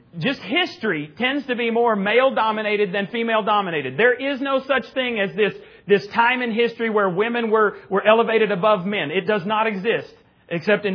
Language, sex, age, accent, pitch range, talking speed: English, male, 40-59, American, 200-245 Hz, 180 wpm